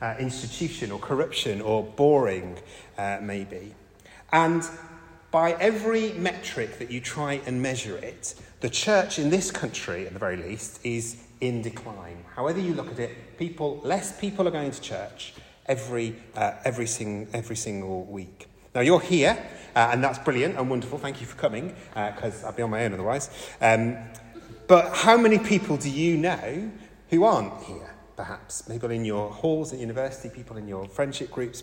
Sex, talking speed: male, 180 wpm